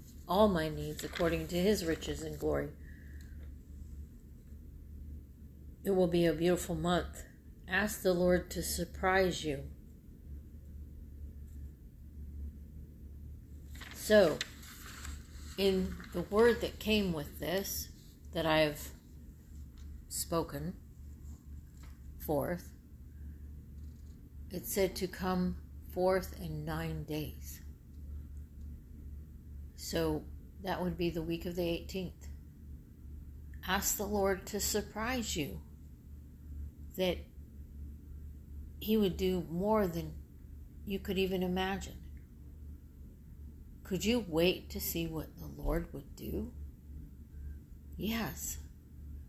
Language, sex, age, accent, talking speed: English, female, 50-69, American, 95 wpm